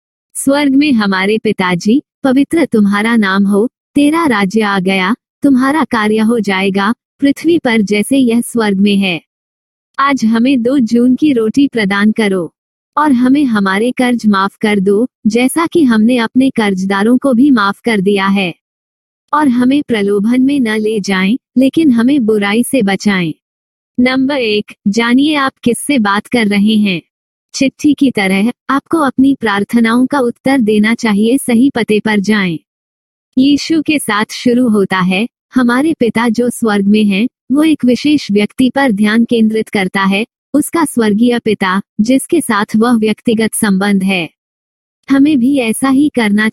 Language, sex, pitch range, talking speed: Hindi, female, 205-265 Hz, 155 wpm